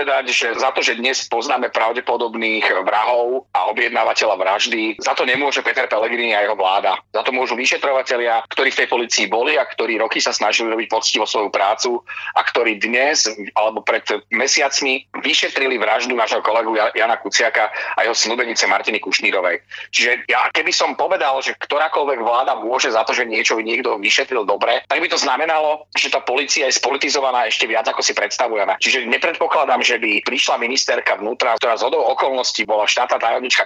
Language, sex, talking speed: Slovak, male, 175 wpm